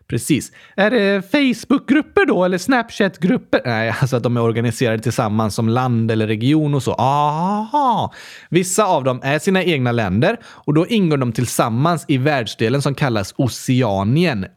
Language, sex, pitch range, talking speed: Swedish, male, 120-190 Hz, 155 wpm